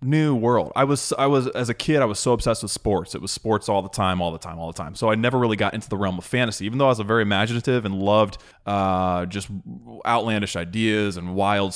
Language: English